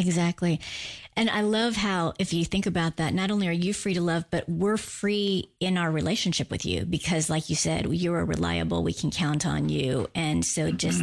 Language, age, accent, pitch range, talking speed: English, 30-49, American, 160-195 Hz, 220 wpm